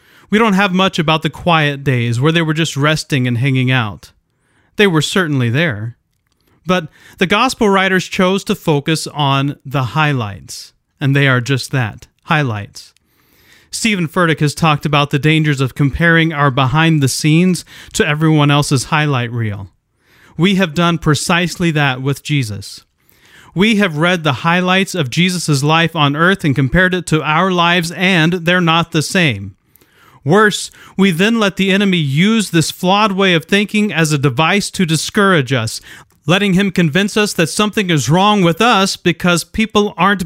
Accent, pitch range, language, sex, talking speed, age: American, 135-185 Hz, English, male, 165 wpm, 40-59